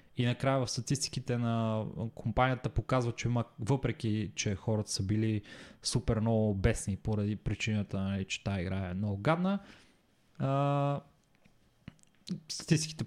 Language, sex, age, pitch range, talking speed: Bulgarian, male, 20-39, 110-135 Hz, 115 wpm